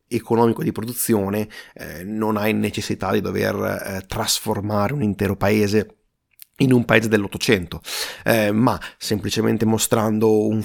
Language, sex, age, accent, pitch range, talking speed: Italian, male, 30-49, native, 105-130 Hz, 125 wpm